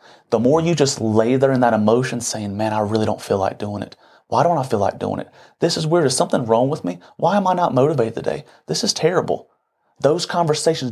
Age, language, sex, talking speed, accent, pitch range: 30-49, English, male, 240 wpm, American, 125-165 Hz